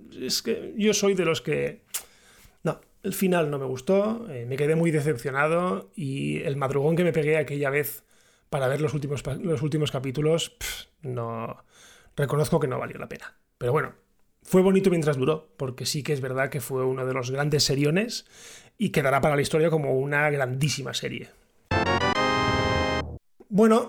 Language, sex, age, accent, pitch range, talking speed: Spanish, male, 30-49, Spanish, 145-195 Hz, 175 wpm